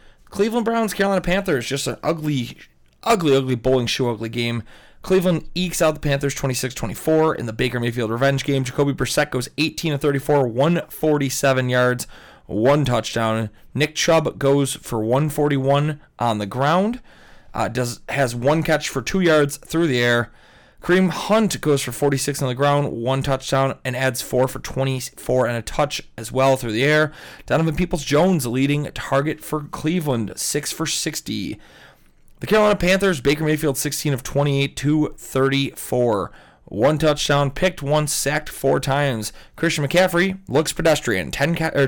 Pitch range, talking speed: 125-160 Hz, 155 wpm